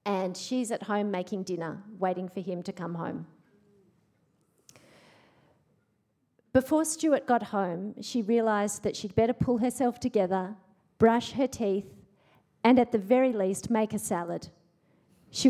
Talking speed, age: 140 wpm, 40-59